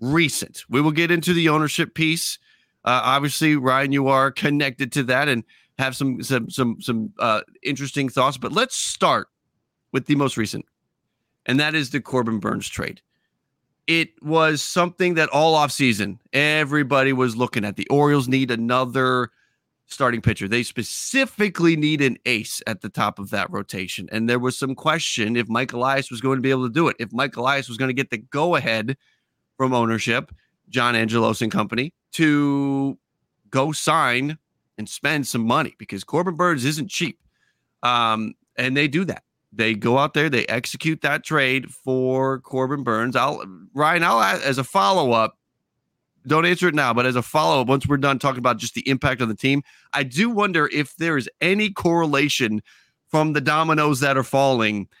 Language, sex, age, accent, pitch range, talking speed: English, male, 30-49, American, 120-150 Hz, 180 wpm